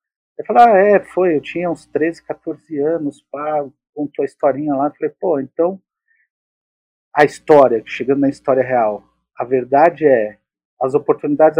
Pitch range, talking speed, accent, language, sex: 135-170 Hz, 155 wpm, Brazilian, Portuguese, male